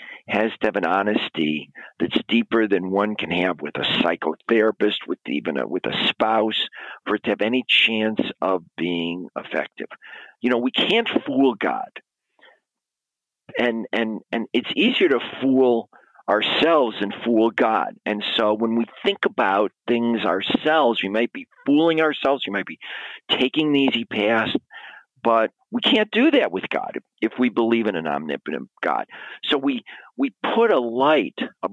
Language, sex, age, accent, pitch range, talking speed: English, male, 50-69, American, 105-150 Hz, 160 wpm